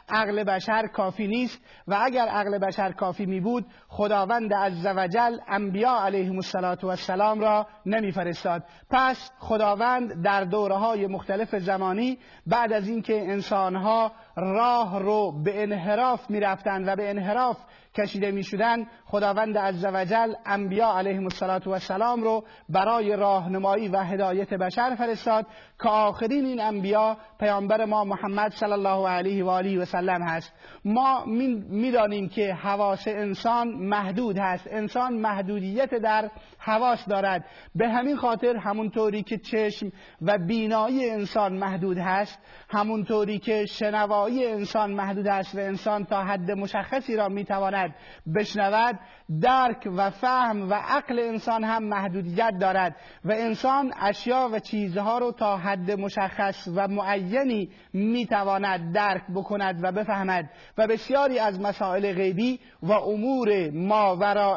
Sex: male